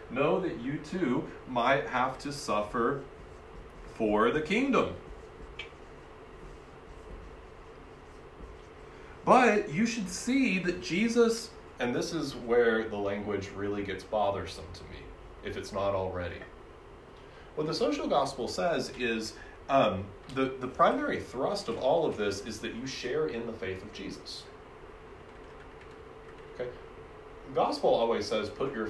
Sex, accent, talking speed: male, American, 130 wpm